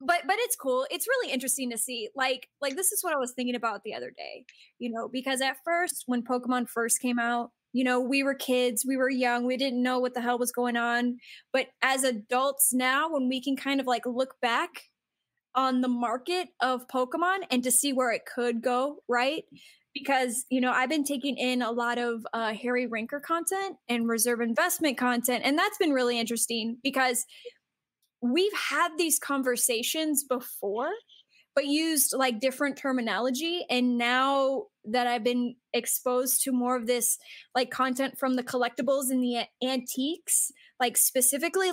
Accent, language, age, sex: American, English, 10-29, female